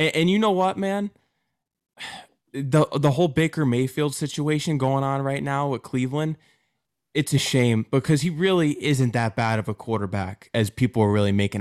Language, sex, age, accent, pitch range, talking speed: English, male, 20-39, American, 115-150 Hz, 175 wpm